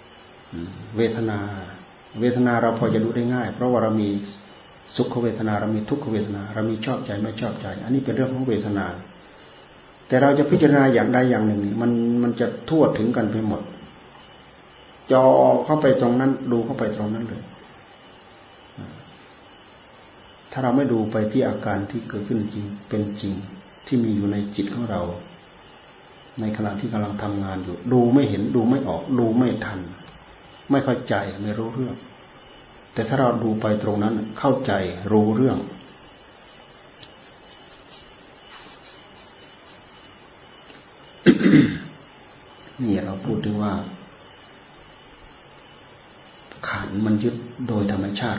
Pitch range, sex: 100-120 Hz, male